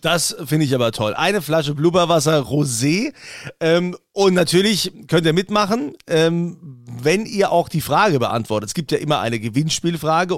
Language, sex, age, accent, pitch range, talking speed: German, male, 40-59, German, 130-180 Hz, 160 wpm